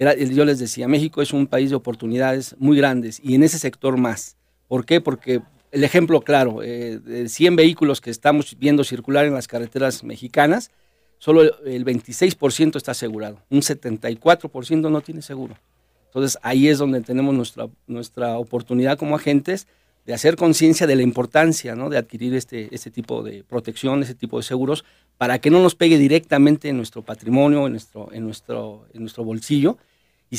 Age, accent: 50-69, Mexican